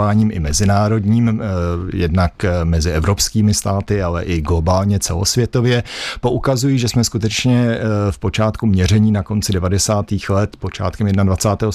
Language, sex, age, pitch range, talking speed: Czech, male, 50-69, 100-120 Hz, 115 wpm